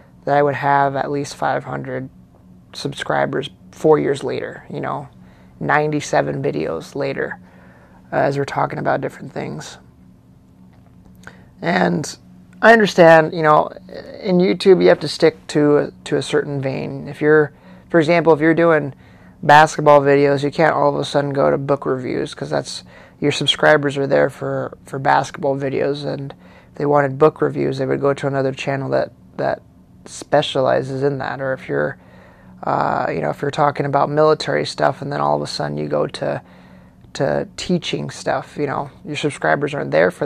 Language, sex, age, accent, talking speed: English, male, 20-39, American, 175 wpm